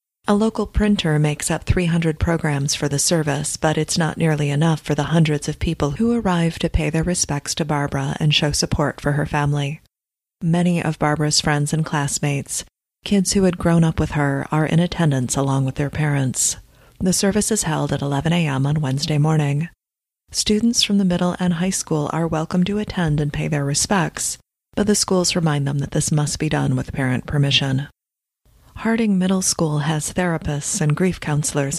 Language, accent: English, American